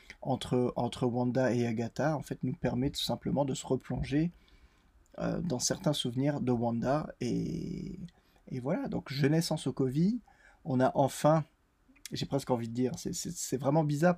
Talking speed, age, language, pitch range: 170 wpm, 20-39, French, 120-165 Hz